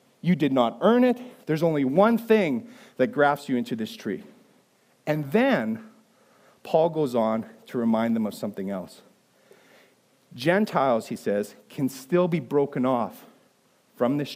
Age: 40-59